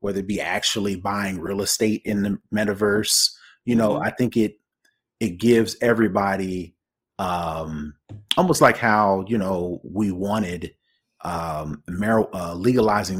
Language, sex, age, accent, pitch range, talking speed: English, male, 30-49, American, 100-115 Hz, 135 wpm